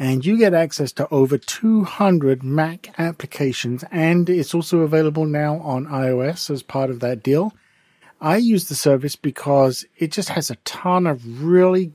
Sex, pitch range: male, 130-170 Hz